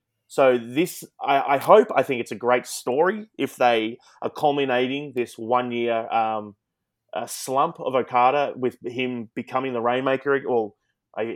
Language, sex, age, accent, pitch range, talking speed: English, male, 20-39, Australian, 110-140 Hz, 155 wpm